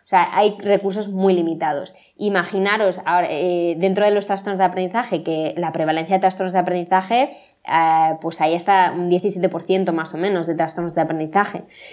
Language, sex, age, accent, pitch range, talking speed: Spanish, female, 20-39, Spanish, 170-195 Hz, 175 wpm